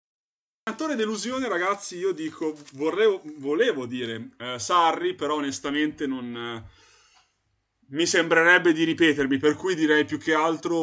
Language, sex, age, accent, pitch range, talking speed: Italian, male, 20-39, native, 125-155 Hz, 135 wpm